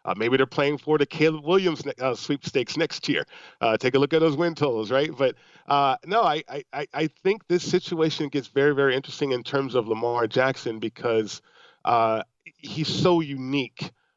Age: 40-59